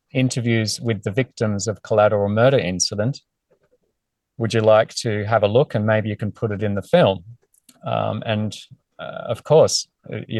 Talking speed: 175 wpm